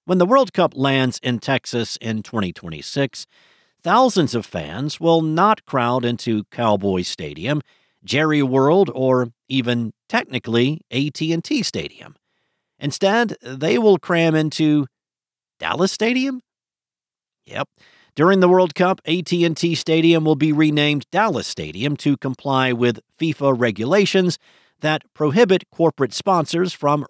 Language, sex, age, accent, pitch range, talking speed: English, male, 50-69, American, 120-170 Hz, 120 wpm